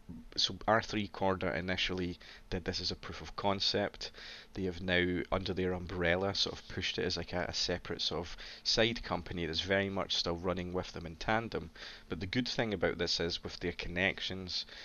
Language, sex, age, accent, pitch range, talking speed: English, male, 30-49, British, 85-95 Hz, 200 wpm